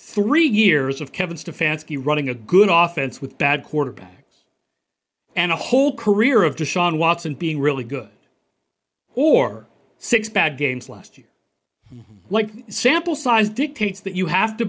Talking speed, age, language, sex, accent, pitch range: 145 wpm, 50-69, English, male, American, 140-190 Hz